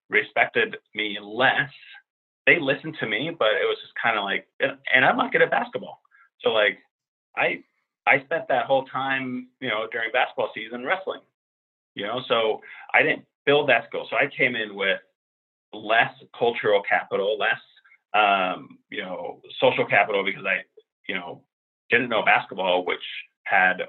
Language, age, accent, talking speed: English, 30-49, American, 165 wpm